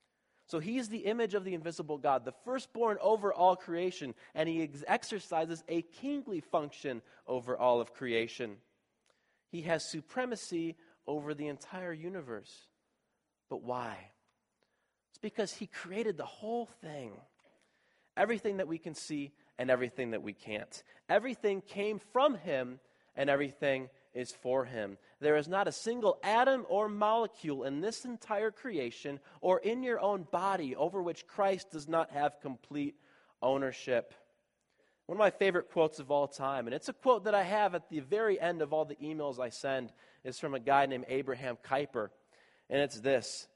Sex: male